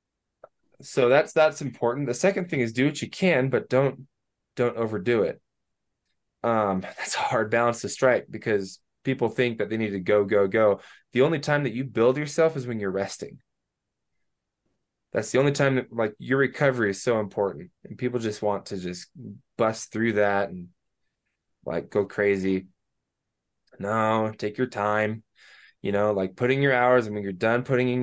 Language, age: English, 20-39